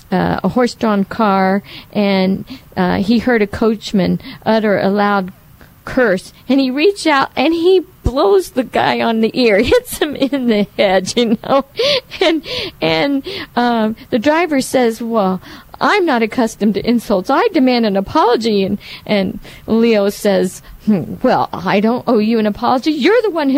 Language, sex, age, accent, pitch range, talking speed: English, female, 50-69, American, 200-280 Hz, 165 wpm